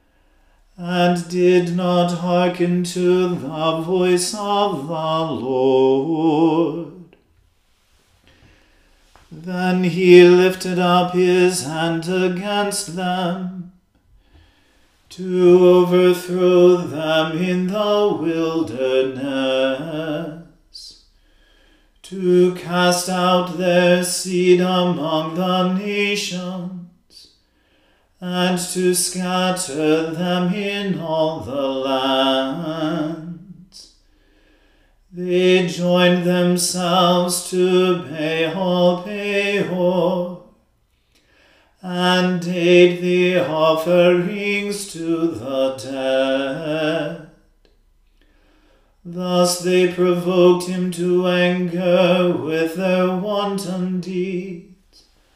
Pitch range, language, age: 160-180 Hz, English, 40-59